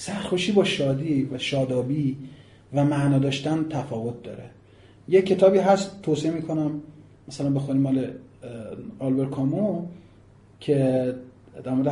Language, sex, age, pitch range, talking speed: Persian, male, 30-49, 120-155 Hz, 110 wpm